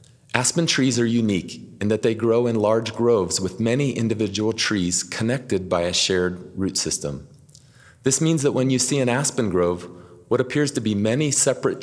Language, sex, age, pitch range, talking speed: English, male, 30-49, 95-130 Hz, 185 wpm